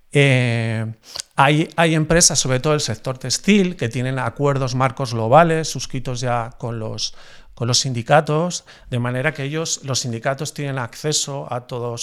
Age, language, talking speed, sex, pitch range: 40-59, Spanish, 150 wpm, male, 120-150 Hz